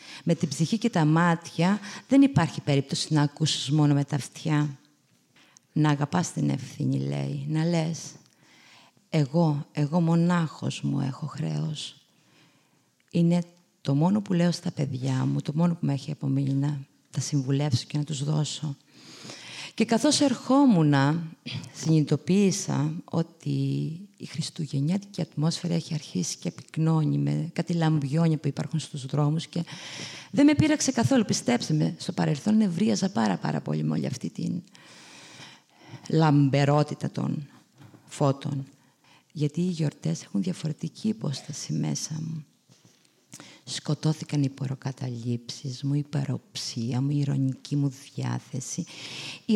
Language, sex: Greek, female